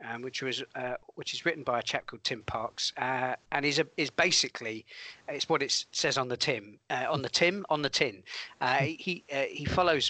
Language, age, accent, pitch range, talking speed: English, 40-59, British, 130-155 Hz, 225 wpm